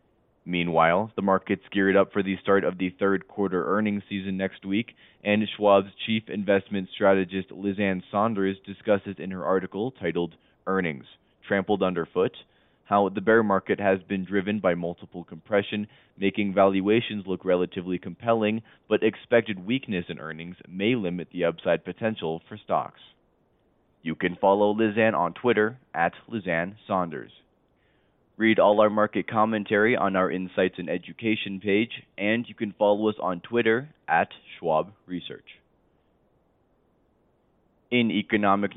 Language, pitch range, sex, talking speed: English, 95-105 Hz, male, 140 wpm